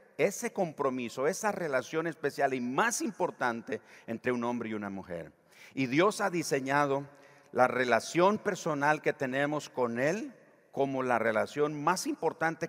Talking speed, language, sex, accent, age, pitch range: 140 wpm, Spanish, male, Mexican, 50-69, 110-145 Hz